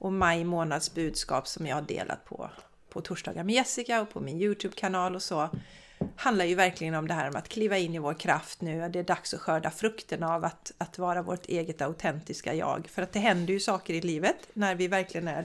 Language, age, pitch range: Swedish, 40-59, 170-220 Hz